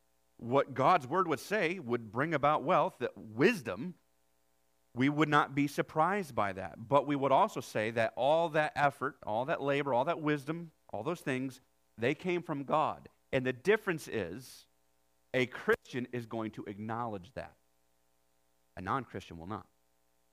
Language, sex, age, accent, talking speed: English, male, 40-59, American, 160 wpm